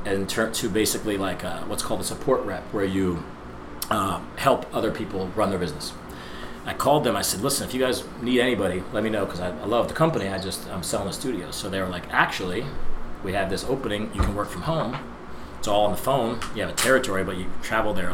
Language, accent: English, American